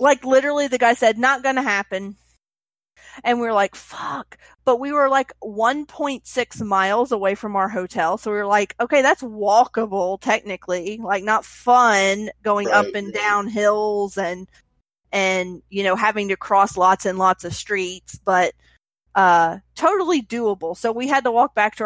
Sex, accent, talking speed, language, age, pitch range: female, American, 175 wpm, English, 30-49, 190-245 Hz